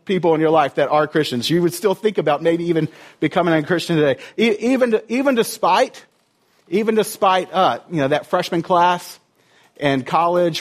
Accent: American